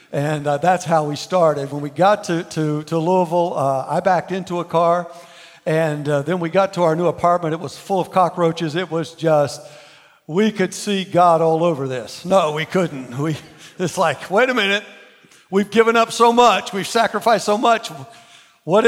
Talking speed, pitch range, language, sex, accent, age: 195 wpm, 160-205 Hz, English, male, American, 60-79